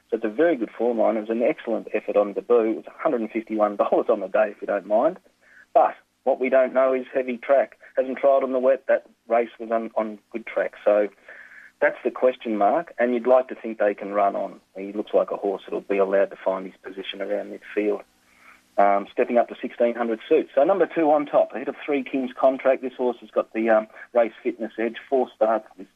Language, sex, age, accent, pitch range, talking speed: English, male, 40-59, Australian, 105-125 Hz, 235 wpm